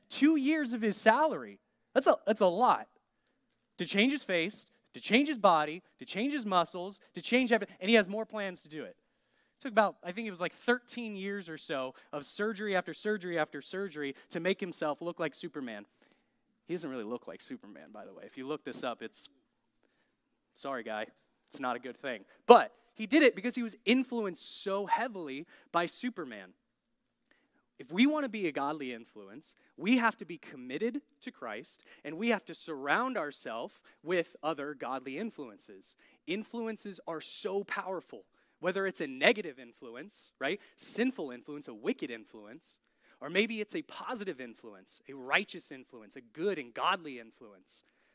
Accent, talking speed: American, 180 wpm